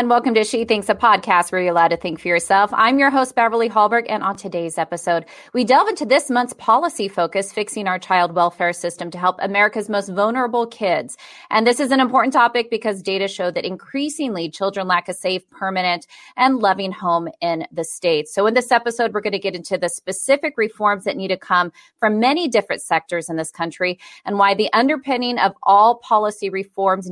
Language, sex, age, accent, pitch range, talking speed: English, female, 30-49, American, 180-220 Hz, 210 wpm